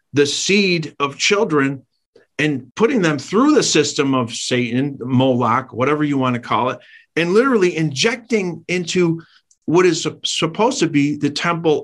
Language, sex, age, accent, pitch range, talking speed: English, male, 50-69, American, 125-165 Hz, 150 wpm